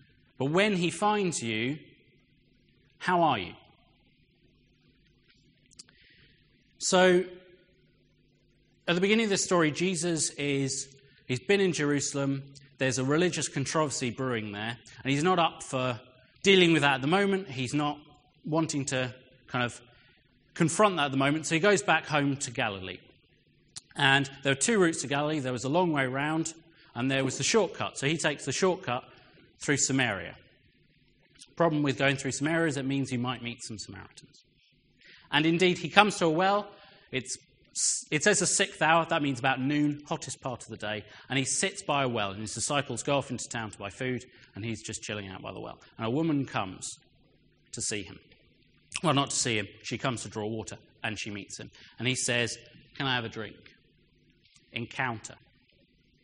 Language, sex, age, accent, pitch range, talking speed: English, male, 30-49, British, 125-165 Hz, 180 wpm